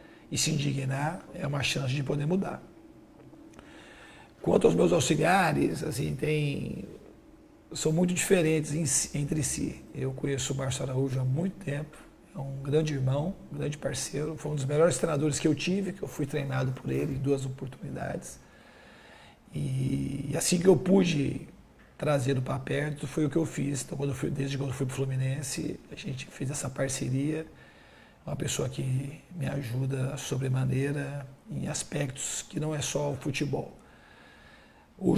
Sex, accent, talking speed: male, Brazilian, 165 wpm